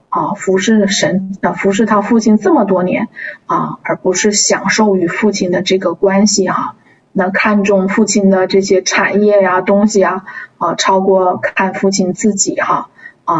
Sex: female